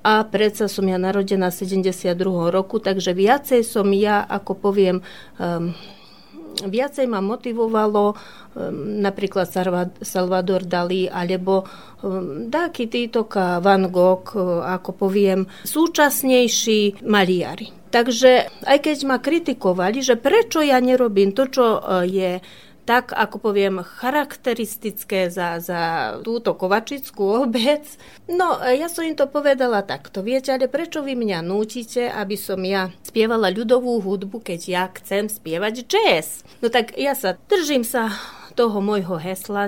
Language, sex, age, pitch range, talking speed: Slovak, female, 30-49, 190-235 Hz, 125 wpm